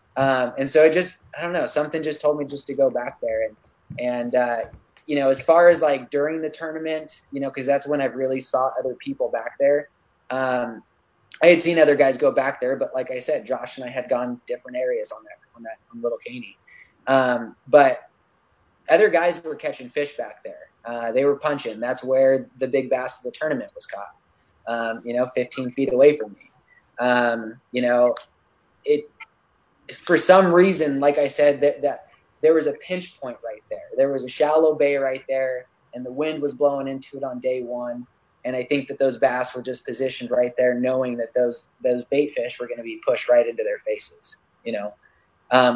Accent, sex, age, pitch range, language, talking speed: American, male, 20-39, 125-155 Hz, English, 210 wpm